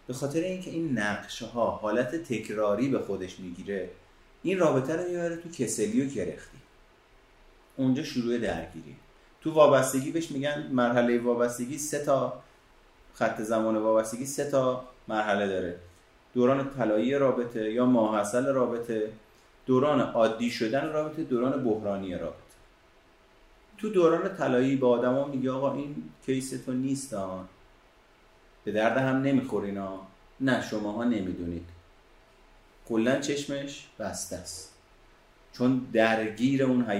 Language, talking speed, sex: Persian, 125 wpm, male